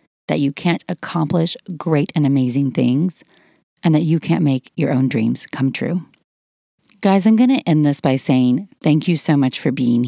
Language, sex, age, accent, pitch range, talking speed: English, female, 30-49, American, 145-190 Hz, 190 wpm